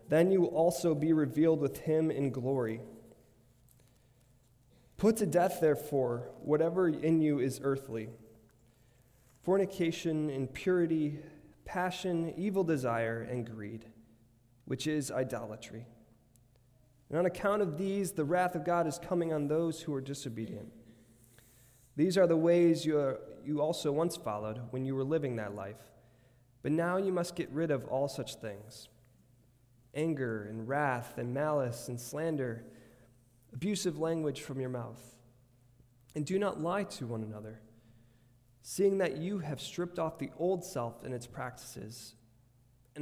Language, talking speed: English, 140 wpm